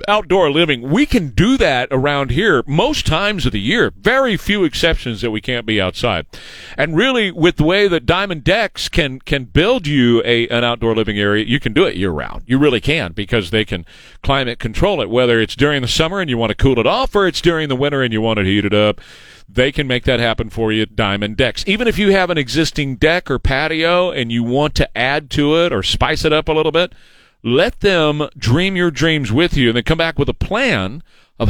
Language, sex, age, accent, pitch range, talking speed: English, male, 40-59, American, 115-170 Hz, 240 wpm